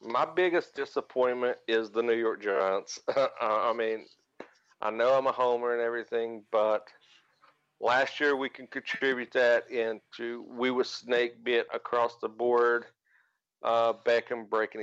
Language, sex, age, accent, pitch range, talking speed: English, male, 50-69, American, 110-125 Hz, 145 wpm